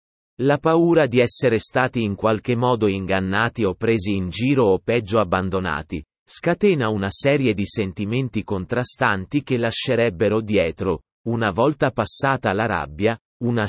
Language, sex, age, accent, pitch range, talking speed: Italian, male, 30-49, native, 100-140 Hz, 135 wpm